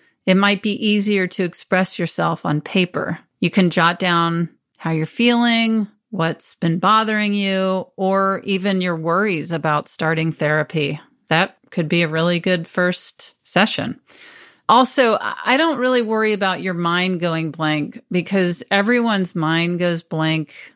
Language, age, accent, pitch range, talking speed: English, 30-49, American, 170-210 Hz, 145 wpm